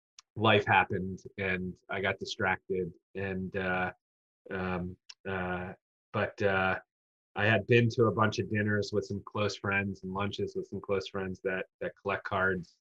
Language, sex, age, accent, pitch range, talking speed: English, male, 30-49, American, 95-110 Hz, 160 wpm